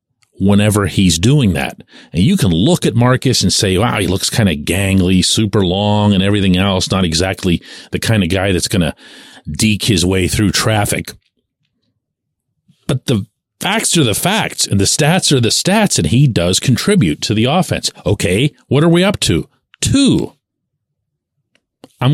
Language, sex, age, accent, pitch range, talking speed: English, male, 40-59, American, 105-150 Hz, 175 wpm